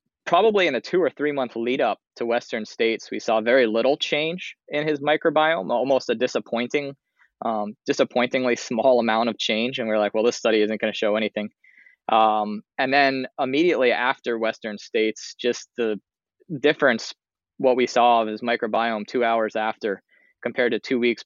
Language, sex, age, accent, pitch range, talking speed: English, male, 20-39, American, 110-130 Hz, 180 wpm